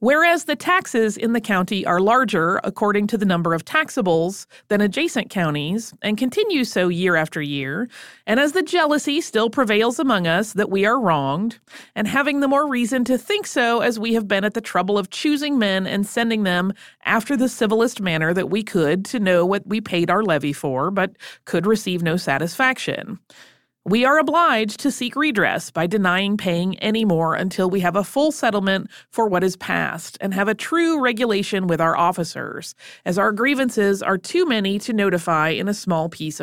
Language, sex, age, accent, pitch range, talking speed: English, female, 30-49, American, 185-255 Hz, 195 wpm